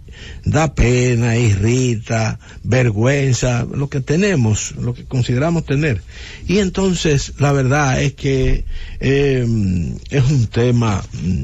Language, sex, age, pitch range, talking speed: English, male, 60-79, 100-145 Hz, 110 wpm